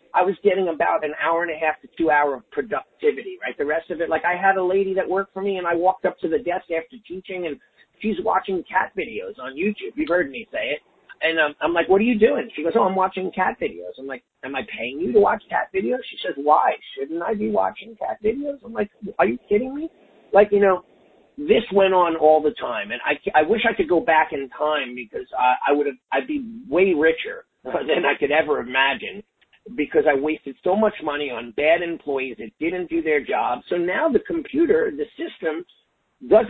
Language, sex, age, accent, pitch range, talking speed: English, male, 40-59, American, 160-255 Hz, 235 wpm